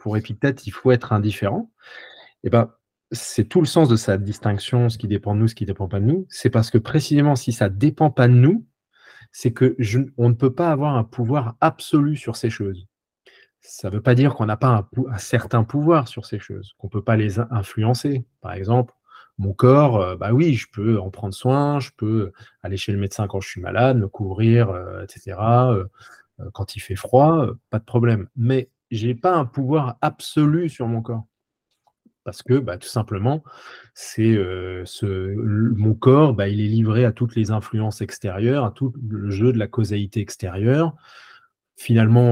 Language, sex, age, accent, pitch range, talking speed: French, male, 30-49, French, 105-130 Hz, 195 wpm